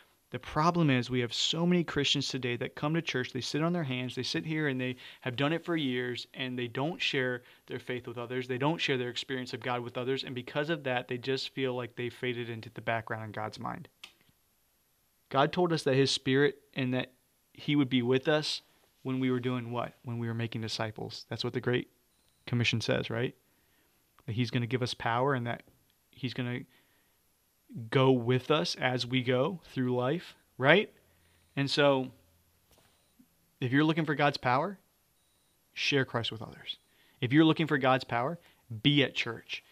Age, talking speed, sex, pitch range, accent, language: 30-49, 200 wpm, male, 120-140 Hz, American, English